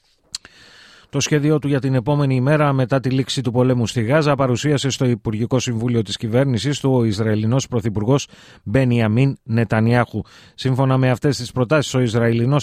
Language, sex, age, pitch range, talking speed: Greek, male, 30-49, 110-135 Hz, 155 wpm